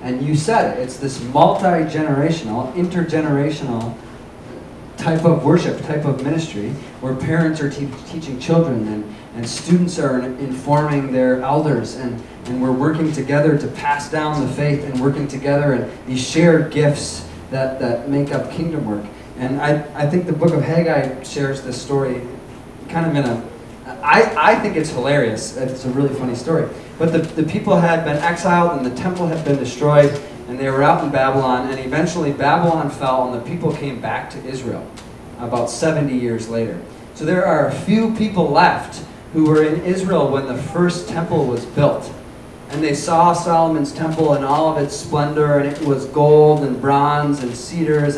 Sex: male